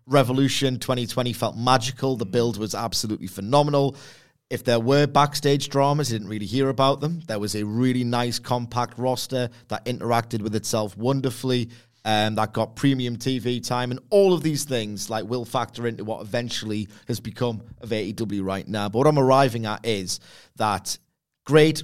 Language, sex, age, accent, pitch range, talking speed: English, male, 30-49, British, 110-130 Hz, 175 wpm